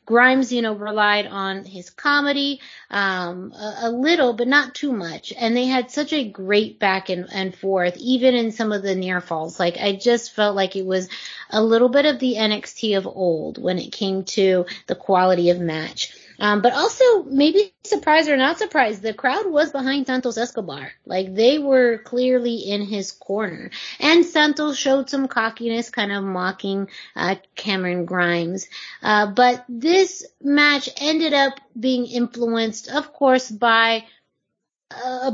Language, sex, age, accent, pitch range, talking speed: English, female, 30-49, American, 190-250 Hz, 165 wpm